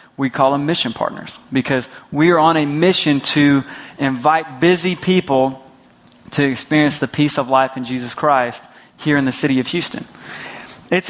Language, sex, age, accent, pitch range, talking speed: English, male, 20-39, American, 130-165 Hz, 170 wpm